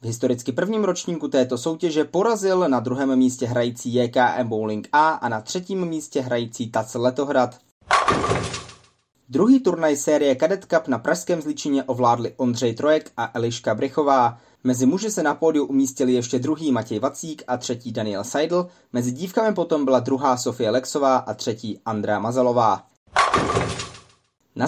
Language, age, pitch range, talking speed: Czech, 20-39, 125-155 Hz, 150 wpm